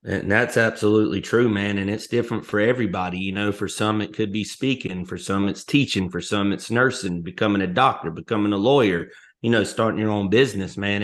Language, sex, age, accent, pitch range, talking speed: English, male, 30-49, American, 105-155 Hz, 210 wpm